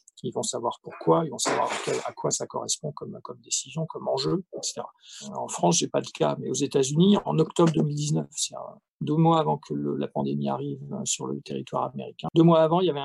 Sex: male